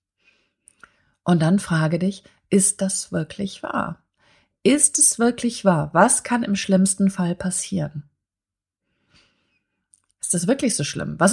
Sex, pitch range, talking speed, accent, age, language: female, 165-220 Hz, 125 wpm, German, 30-49, German